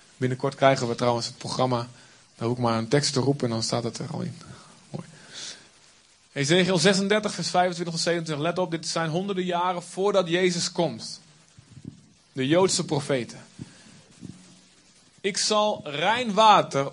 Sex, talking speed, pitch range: male, 155 wpm, 140-185 Hz